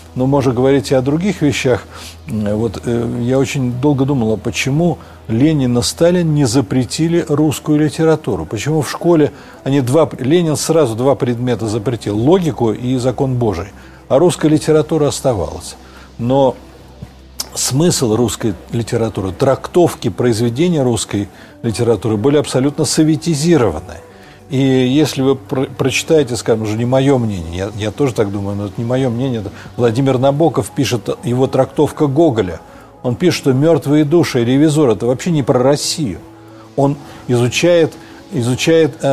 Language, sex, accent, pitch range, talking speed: Russian, male, native, 120-155 Hz, 140 wpm